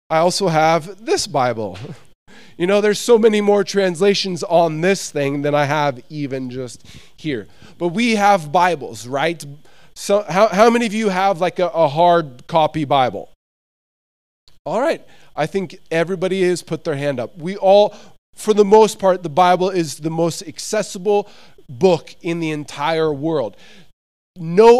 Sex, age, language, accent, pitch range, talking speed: male, 20-39, English, American, 140-185 Hz, 160 wpm